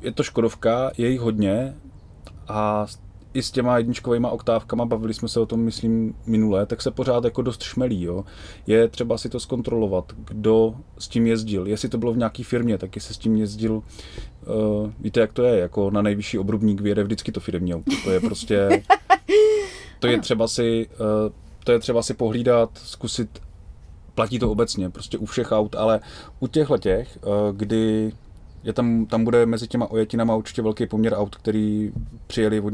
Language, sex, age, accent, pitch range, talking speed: Czech, male, 20-39, native, 100-120 Hz, 180 wpm